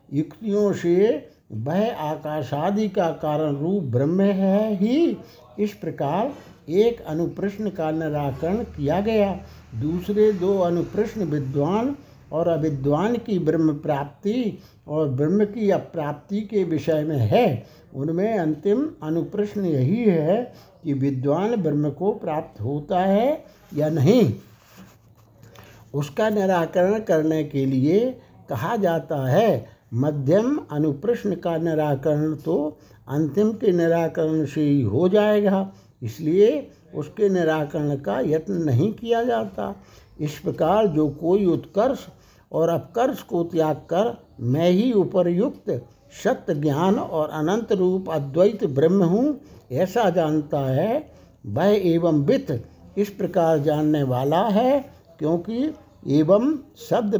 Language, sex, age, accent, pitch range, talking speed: Hindi, male, 60-79, native, 150-205 Hz, 115 wpm